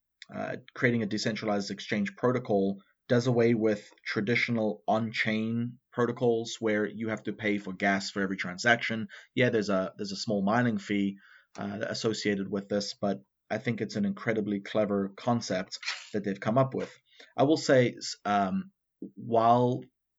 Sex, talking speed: male, 155 wpm